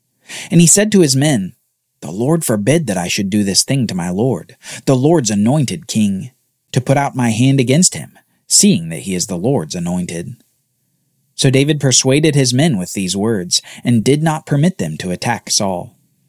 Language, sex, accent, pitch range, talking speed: English, male, American, 115-165 Hz, 190 wpm